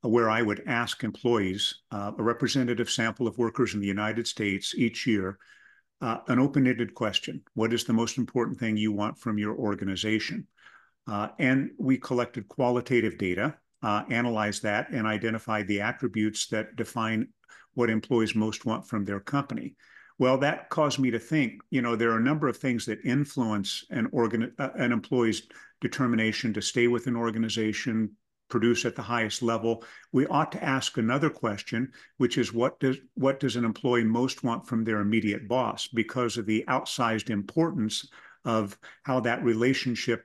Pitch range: 110-130 Hz